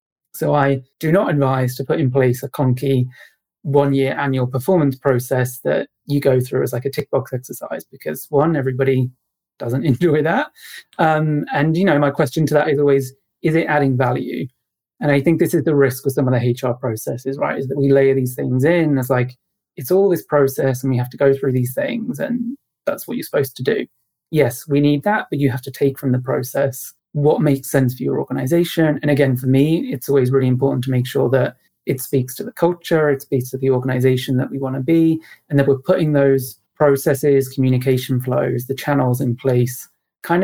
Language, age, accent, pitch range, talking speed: English, 30-49, British, 130-150 Hz, 215 wpm